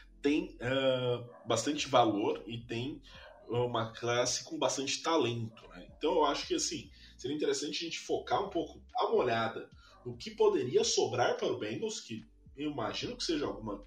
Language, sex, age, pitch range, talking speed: Portuguese, male, 20-39, 115-190 Hz, 160 wpm